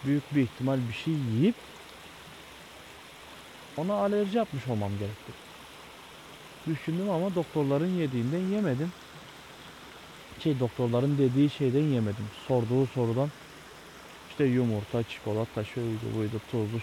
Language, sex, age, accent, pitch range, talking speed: Turkish, male, 30-49, native, 115-150 Hz, 105 wpm